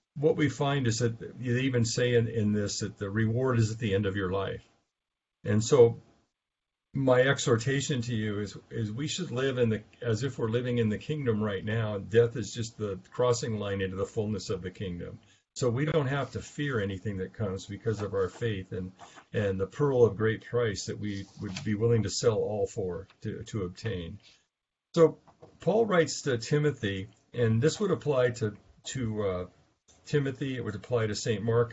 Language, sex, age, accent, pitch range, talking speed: English, male, 50-69, American, 105-135 Hz, 200 wpm